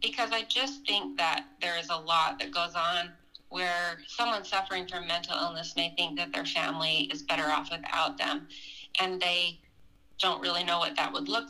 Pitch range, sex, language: 170-205 Hz, female, English